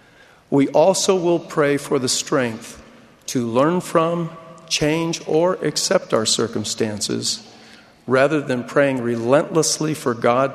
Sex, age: male, 50-69